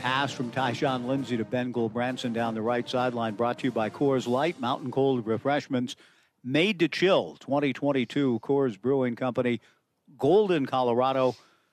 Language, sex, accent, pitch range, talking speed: English, male, American, 120-140 Hz, 150 wpm